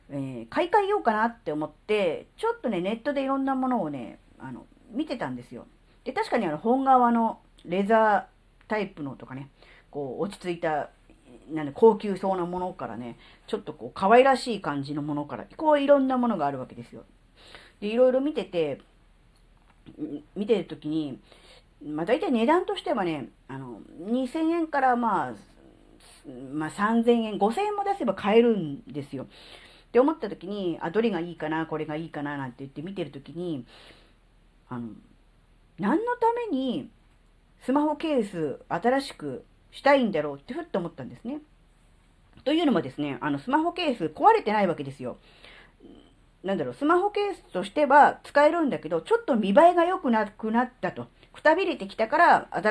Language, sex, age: Japanese, female, 40-59